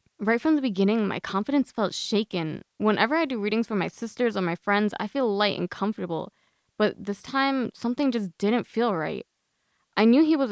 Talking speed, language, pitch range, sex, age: 200 wpm, English, 185-230 Hz, female, 20-39